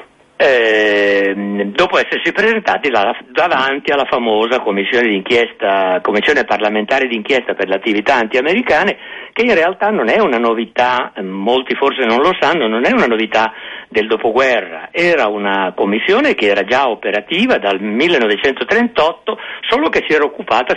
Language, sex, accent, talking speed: Italian, male, native, 140 wpm